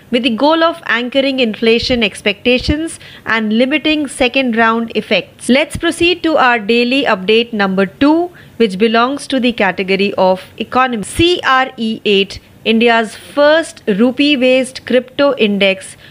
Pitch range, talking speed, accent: 220-275 Hz, 125 wpm, native